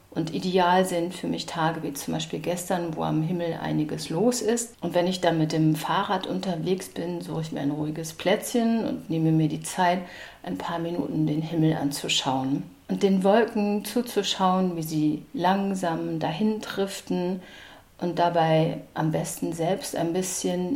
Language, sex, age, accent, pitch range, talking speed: German, female, 50-69, German, 155-195 Hz, 170 wpm